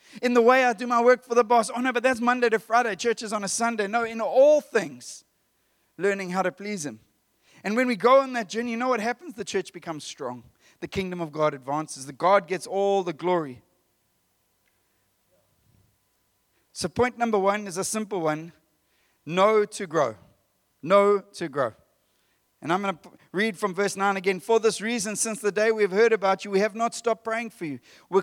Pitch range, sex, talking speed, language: 175-230 Hz, male, 210 wpm, English